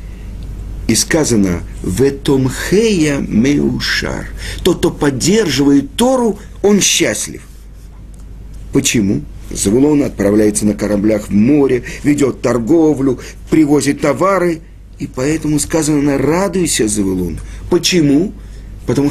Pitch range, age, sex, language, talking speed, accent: 105-150 Hz, 50-69, male, Russian, 90 wpm, native